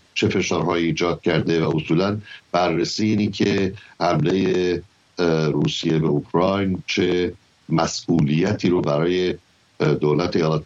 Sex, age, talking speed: male, 60-79, 115 wpm